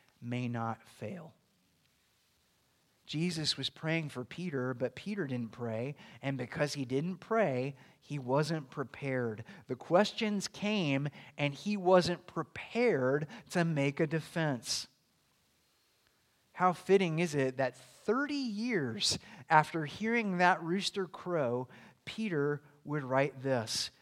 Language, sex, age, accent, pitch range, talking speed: English, male, 30-49, American, 135-205 Hz, 115 wpm